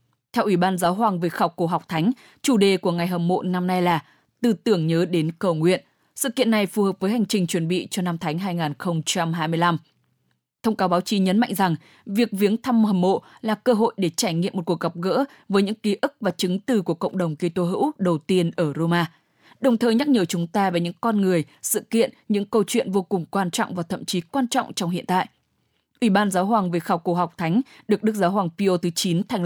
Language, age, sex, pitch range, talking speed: English, 20-39, female, 175-215 Hz, 245 wpm